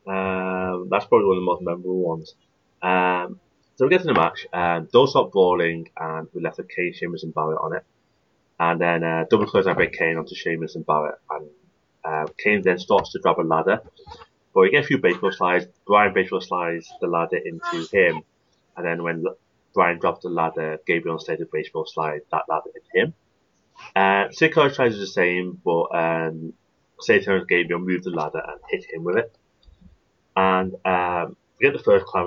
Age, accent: 30-49, British